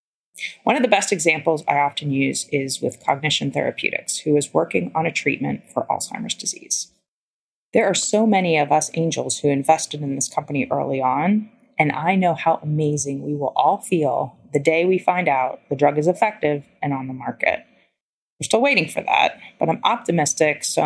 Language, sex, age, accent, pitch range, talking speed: English, female, 30-49, American, 145-205 Hz, 190 wpm